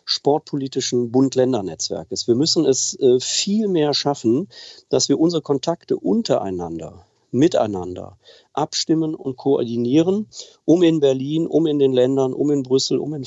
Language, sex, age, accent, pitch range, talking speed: German, male, 50-69, German, 115-150 Hz, 130 wpm